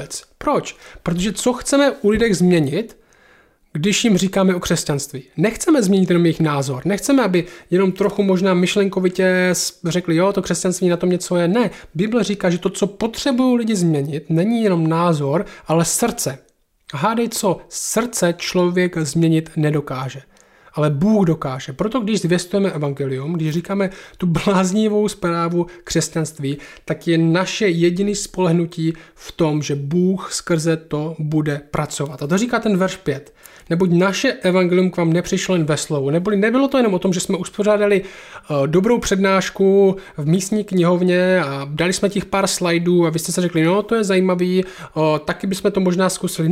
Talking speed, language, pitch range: 165 wpm, Czech, 165-200 Hz